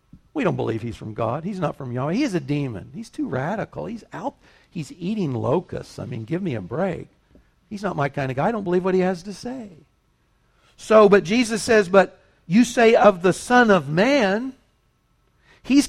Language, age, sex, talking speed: English, 60-79, male, 210 wpm